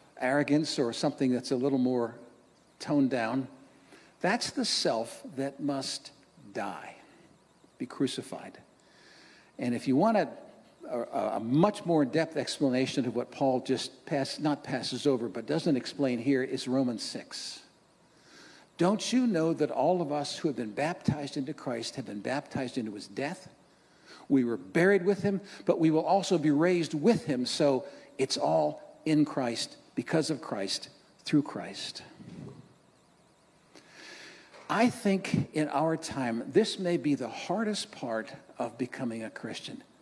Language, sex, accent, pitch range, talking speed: English, male, American, 130-165 Hz, 150 wpm